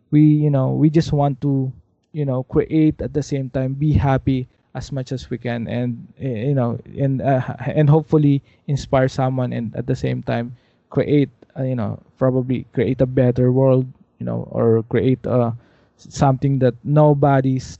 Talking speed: 180 wpm